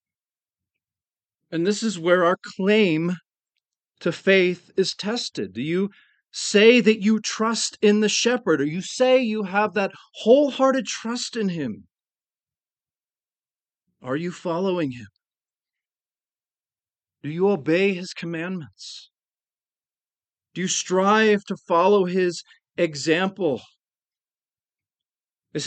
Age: 40-59